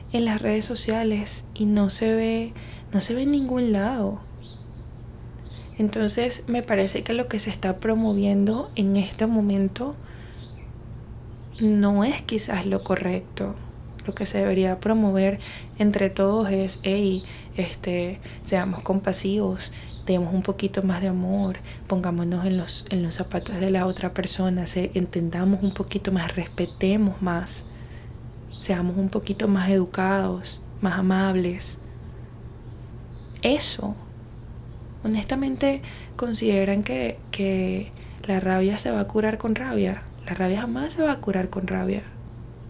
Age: 20-39